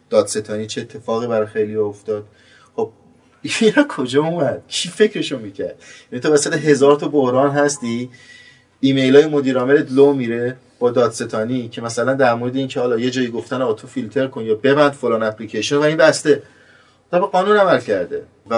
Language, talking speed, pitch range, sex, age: Persian, 170 wpm, 110-145 Hz, male, 30-49